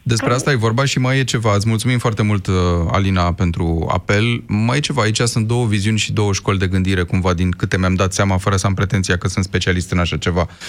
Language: Romanian